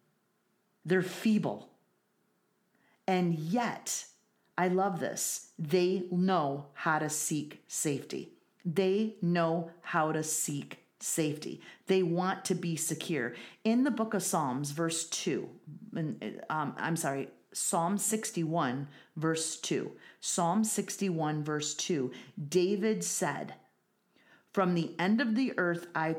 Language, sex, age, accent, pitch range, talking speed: English, female, 40-59, American, 155-195 Hz, 115 wpm